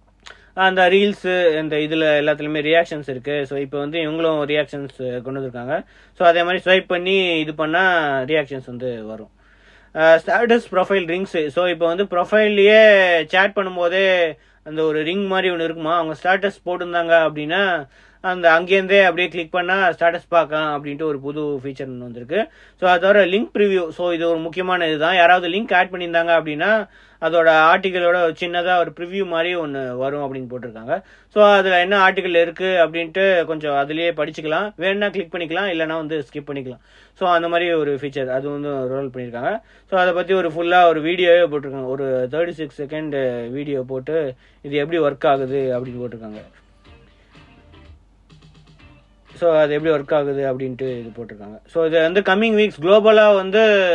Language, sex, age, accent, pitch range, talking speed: English, male, 30-49, Indian, 140-185 Hz, 125 wpm